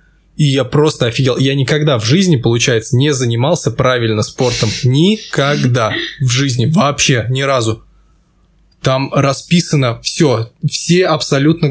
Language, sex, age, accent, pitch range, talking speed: Russian, male, 20-39, native, 130-160 Hz, 125 wpm